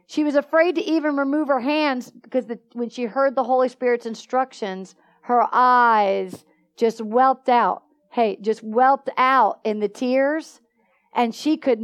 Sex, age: female, 50-69